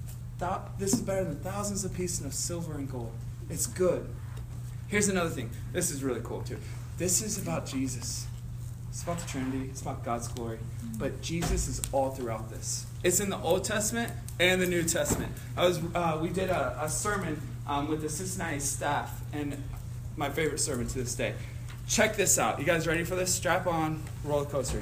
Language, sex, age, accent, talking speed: English, male, 20-39, American, 195 wpm